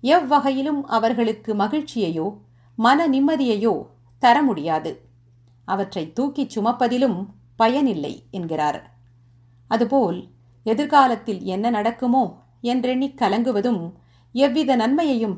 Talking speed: 80 wpm